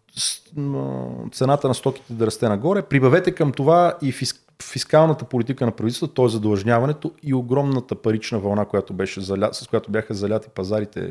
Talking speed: 145 wpm